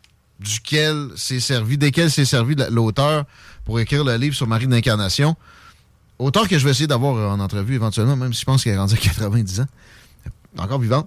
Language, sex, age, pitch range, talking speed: French, male, 30-49, 105-155 Hz, 190 wpm